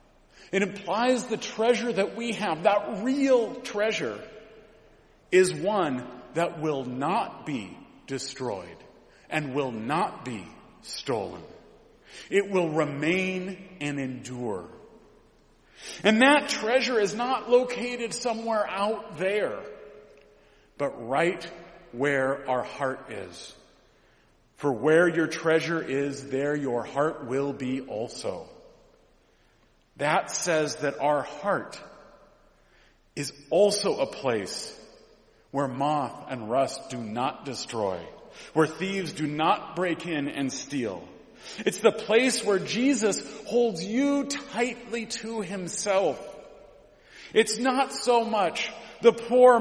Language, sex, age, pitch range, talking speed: English, male, 40-59, 155-230 Hz, 110 wpm